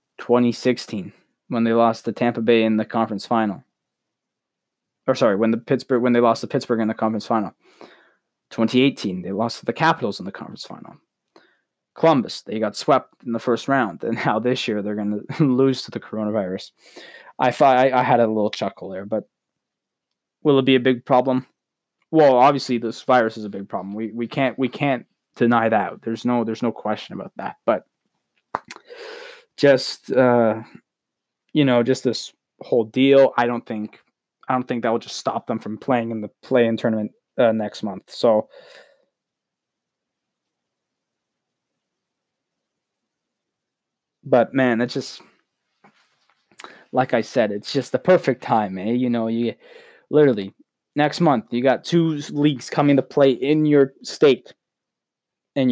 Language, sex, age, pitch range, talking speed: English, male, 20-39, 115-135 Hz, 165 wpm